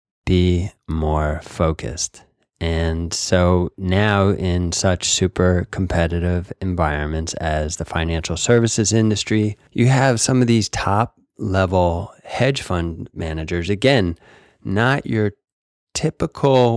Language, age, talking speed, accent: English, 20-39, 105 wpm, American